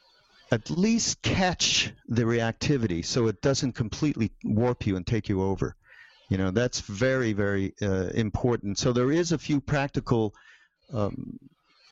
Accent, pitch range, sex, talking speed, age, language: American, 105-140 Hz, male, 145 wpm, 50-69, English